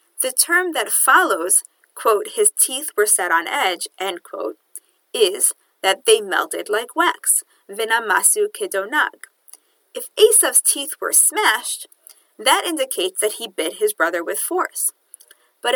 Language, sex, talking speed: English, female, 135 wpm